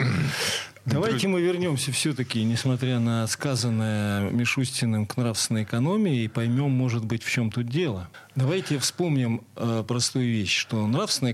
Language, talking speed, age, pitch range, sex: Russian, 130 wpm, 40-59, 115-160 Hz, male